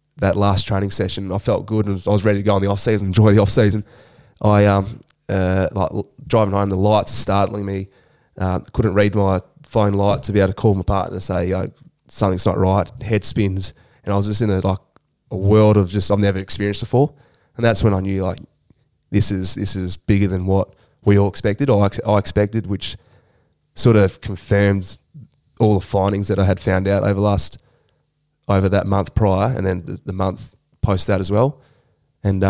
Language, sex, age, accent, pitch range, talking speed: English, male, 20-39, Australian, 95-110 Hz, 210 wpm